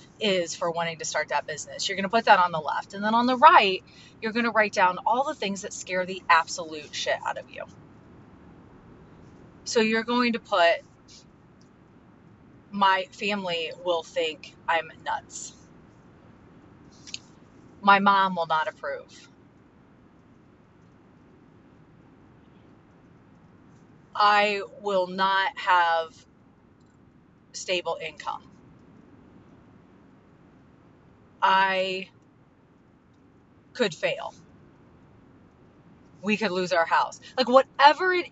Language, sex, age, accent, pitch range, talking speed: English, female, 30-49, American, 175-235 Hz, 110 wpm